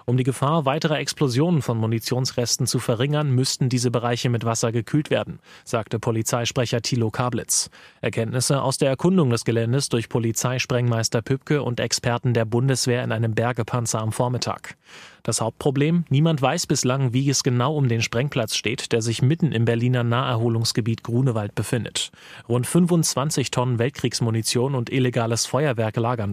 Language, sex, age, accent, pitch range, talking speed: German, male, 30-49, German, 120-140 Hz, 150 wpm